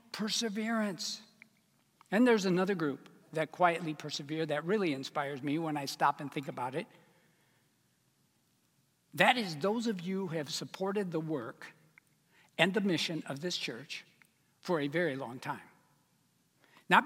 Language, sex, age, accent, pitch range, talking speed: English, male, 60-79, American, 165-230 Hz, 145 wpm